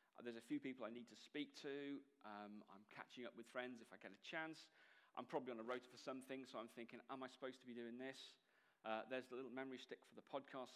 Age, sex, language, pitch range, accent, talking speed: 40-59, male, English, 120-140 Hz, British, 255 wpm